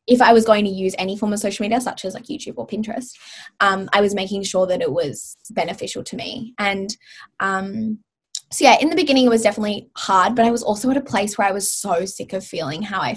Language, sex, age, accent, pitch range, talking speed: English, female, 20-39, Australian, 195-235 Hz, 250 wpm